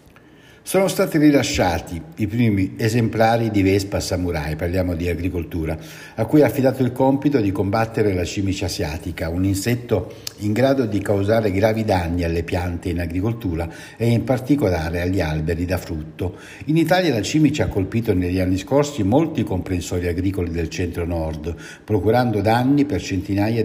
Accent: native